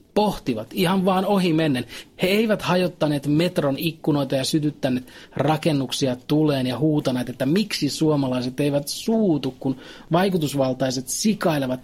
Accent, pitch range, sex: native, 135-185 Hz, male